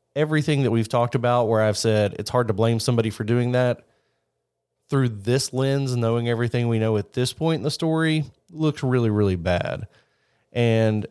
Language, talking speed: English, 185 wpm